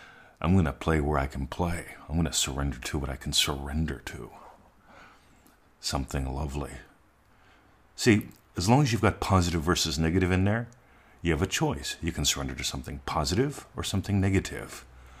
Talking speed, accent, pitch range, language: 165 wpm, American, 75-100 Hz, English